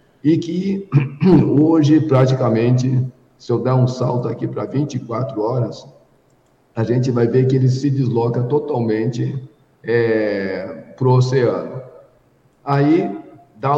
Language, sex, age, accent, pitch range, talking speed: Portuguese, male, 50-69, Brazilian, 115-140 Hz, 120 wpm